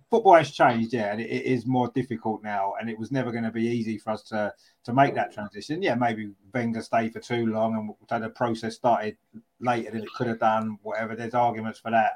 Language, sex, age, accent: English, male, 30-49, British